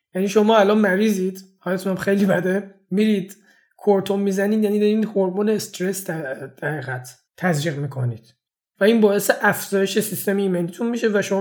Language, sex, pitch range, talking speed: Persian, male, 180-205 Hz, 140 wpm